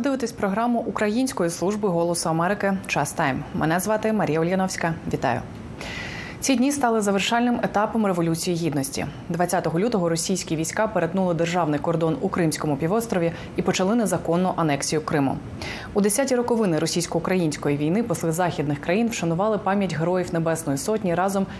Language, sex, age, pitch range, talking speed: Ukrainian, female, 20-39, 165-215 Hz, 135 wpm